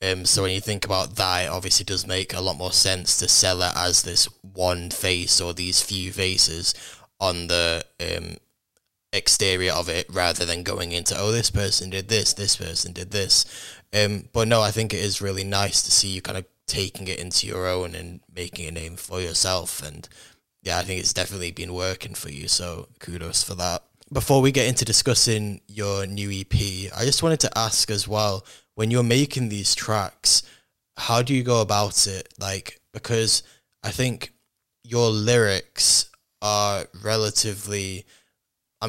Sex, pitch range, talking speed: male, 90-110 Hz, 185 wpm